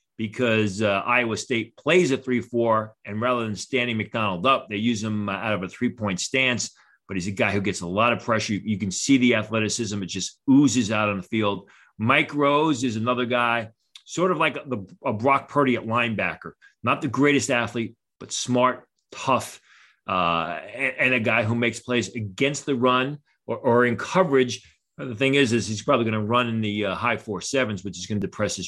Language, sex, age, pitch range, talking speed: English, male, 40-59, 110-140 Hz, 210 wpm